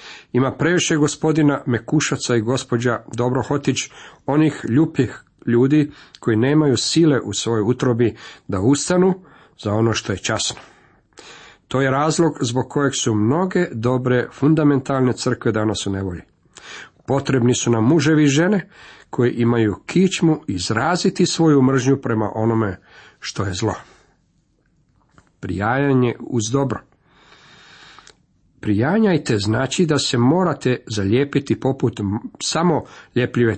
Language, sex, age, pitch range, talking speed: Croatian, male, 50-69, 110-150 Hz, 115 wpm